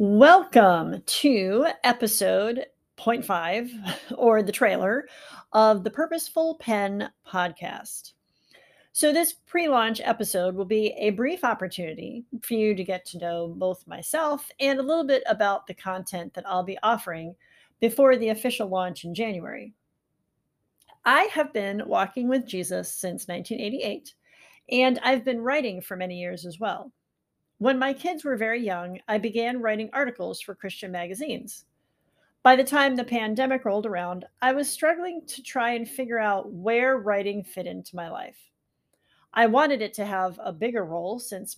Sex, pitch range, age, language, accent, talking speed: female, 190-260 Hz, 40-59, English, American, 155 wpm